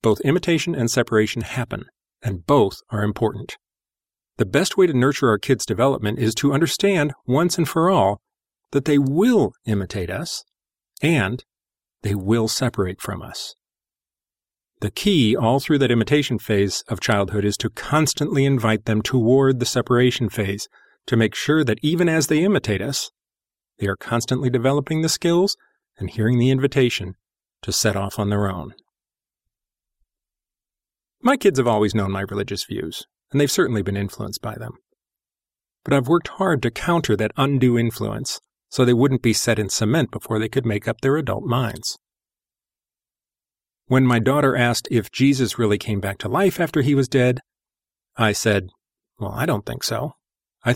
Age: 40-59